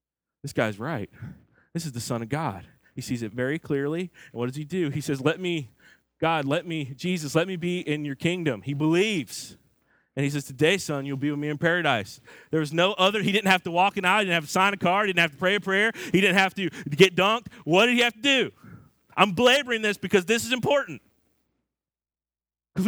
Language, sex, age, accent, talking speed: English, male, 30-49, American, 240 wpm